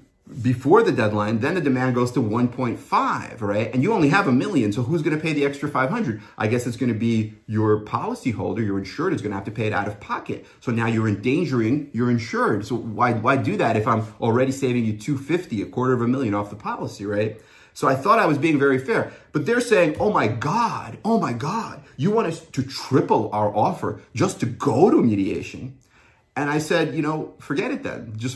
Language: English